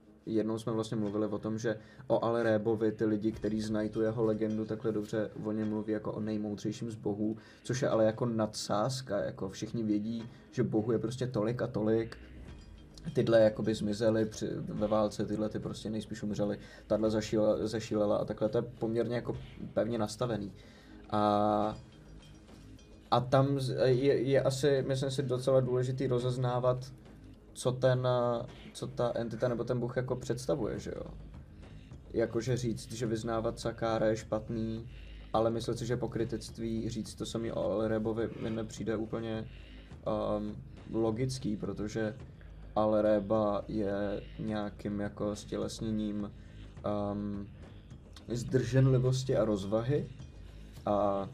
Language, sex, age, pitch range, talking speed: Czech, male, 20-39, 105-115 Hz, 140 wpm